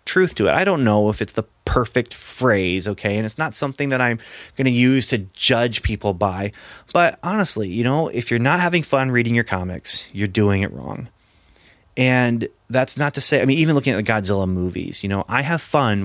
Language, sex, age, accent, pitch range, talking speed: English, male, 30-49, American, 95-115 Hz, 220 wpm